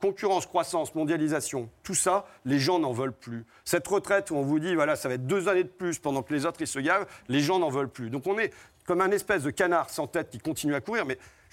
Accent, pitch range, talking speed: French, 150-210 Hz, 270 wpm